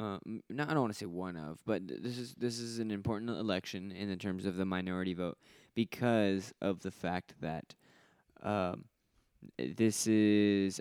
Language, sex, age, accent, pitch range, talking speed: English, male, 20-39, American, 90-100 Hz, 180 wpm